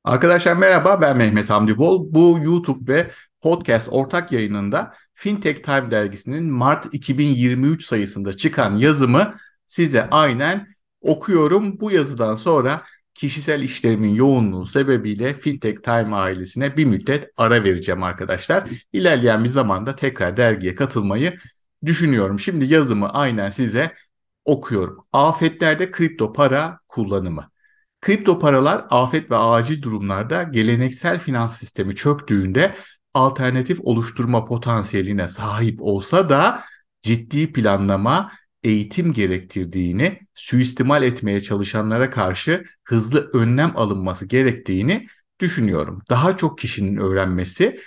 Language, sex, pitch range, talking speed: Turkish, male, 110-150 Hz, 110 wpm